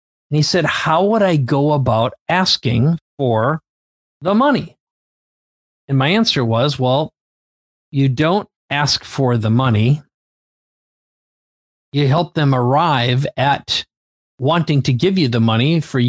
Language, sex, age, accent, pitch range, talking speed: English, male, 40-59, American, 120-155 Hz, 130 wpm